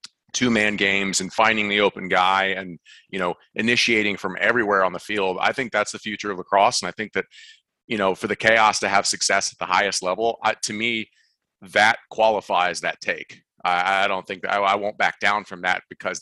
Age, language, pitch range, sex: 30-49, English, 95-110 Hz, male